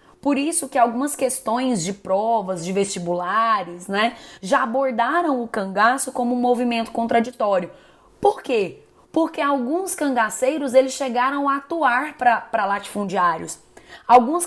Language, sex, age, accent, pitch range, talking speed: Portuguese, female, 20-39, Brazilian, 195-255 Hz, 120 wpm